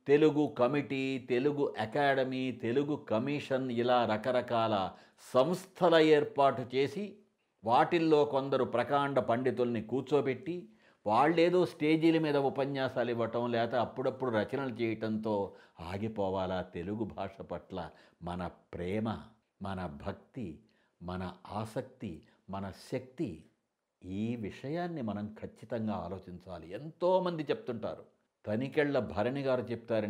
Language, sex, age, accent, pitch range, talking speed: Telugu, male, 60-79, native, 105-145 Hz, 95 wpm